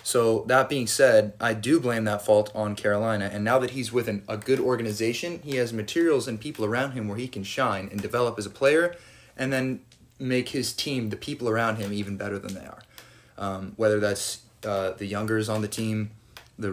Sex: male